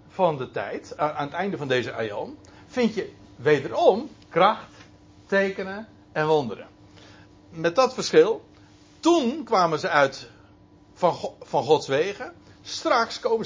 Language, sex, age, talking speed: Dutch, male, 60-79, 130 wpm